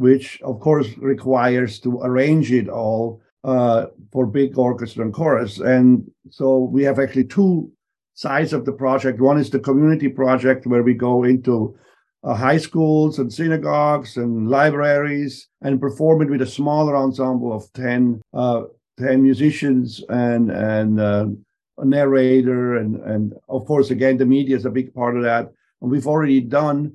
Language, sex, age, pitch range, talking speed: English, male, 50-69, 120-140 Hz, 165 wpm